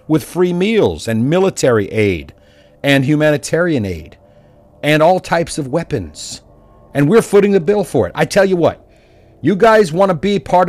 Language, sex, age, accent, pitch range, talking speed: English, male, 50-69, American, 110-175 Hz, 170 wpm